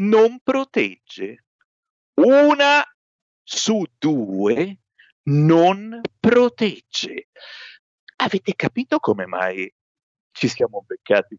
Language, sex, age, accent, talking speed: Italian, male, 50-69, native, 75 wpm